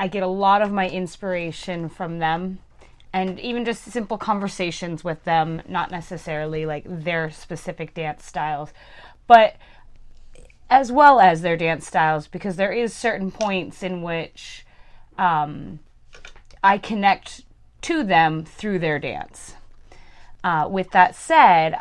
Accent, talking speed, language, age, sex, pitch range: American, 135 wpm, English, 20-39, female, 160-195 Hz